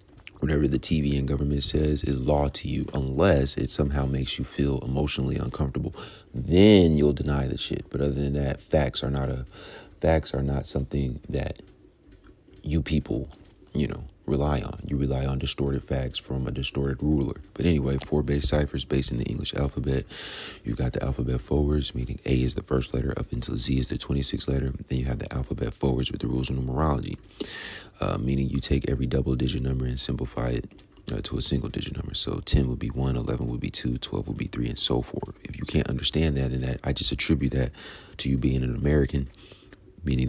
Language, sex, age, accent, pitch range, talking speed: English, male, 30-49, American, 65-75 Hz, 205 wpm